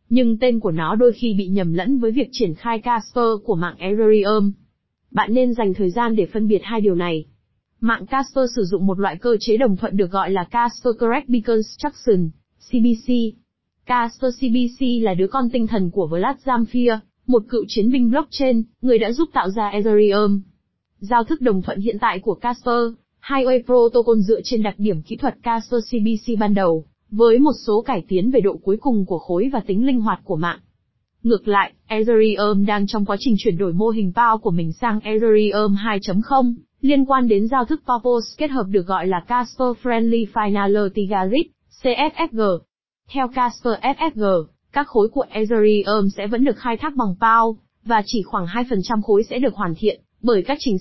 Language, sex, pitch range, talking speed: Vietnamese, female, 200-245 Hz, 190 wpm